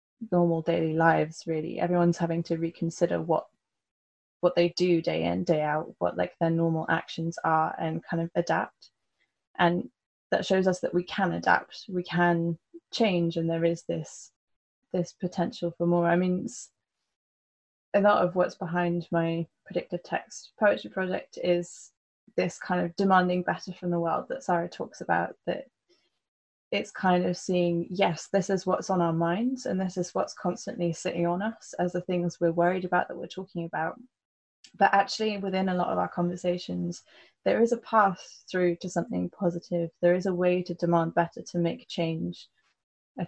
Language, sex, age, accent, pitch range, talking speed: English, female, 20-39, British, 170-185 Hz, 175 wpm